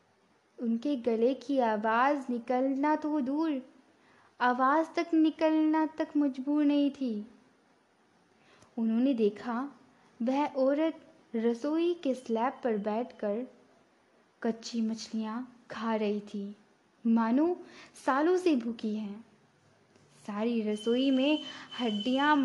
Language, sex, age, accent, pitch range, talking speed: Hindi, female, 10-29, native, 225-270 Hz, 100 wpm